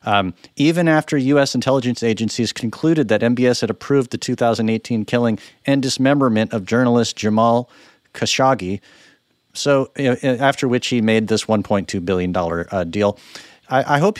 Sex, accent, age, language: male, American, 50-69, English